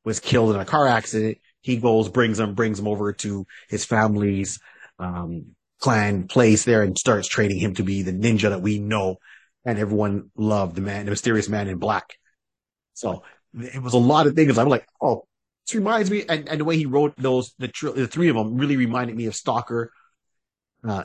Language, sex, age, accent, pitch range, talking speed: English, male, 30-49, American, 110-135 Hz, 210 wpm